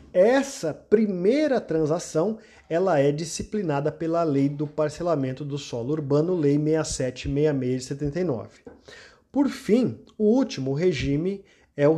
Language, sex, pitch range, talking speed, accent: Portuguese, male, 140-185 Hz, 120 wpm, Brazilian